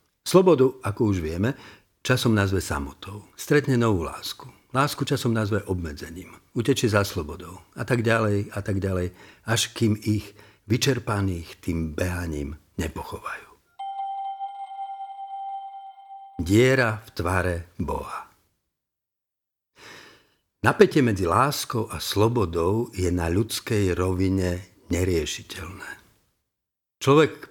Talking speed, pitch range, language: 100 wpm, 90-120 Hz, Slovak